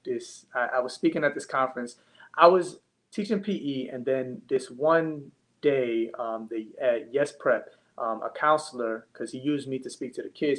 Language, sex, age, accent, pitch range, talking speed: English, male, 20-39, American, 115-150 Hz, 195 wpm